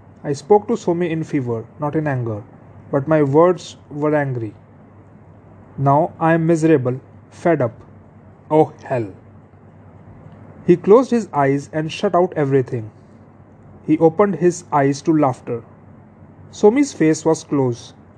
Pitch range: 110-165 Hz